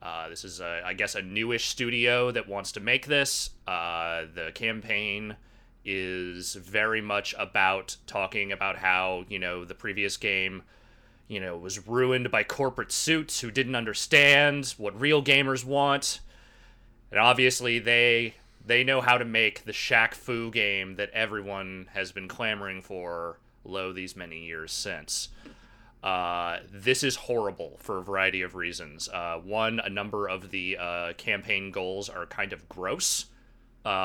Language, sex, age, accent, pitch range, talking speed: English, male, 30-49, American, 100-140 Hz, 155 wpm